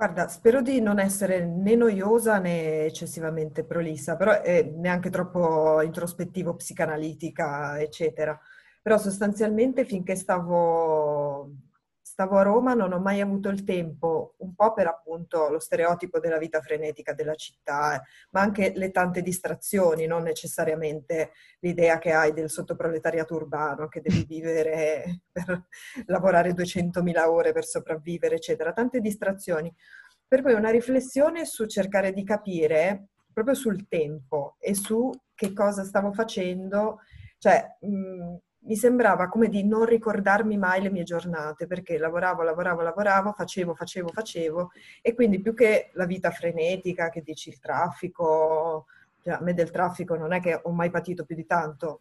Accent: native